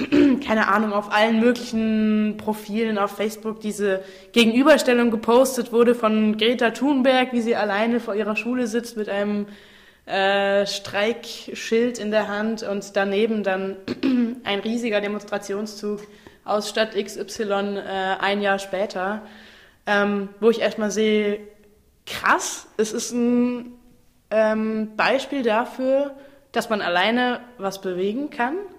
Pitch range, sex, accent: 200-235 Hz, female, German